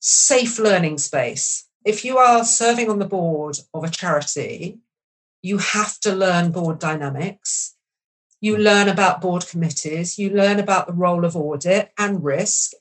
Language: English